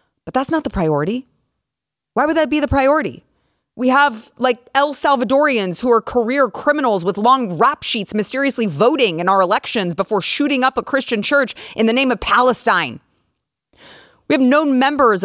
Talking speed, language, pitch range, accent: 175 wpm, English, 215-285 Hz, American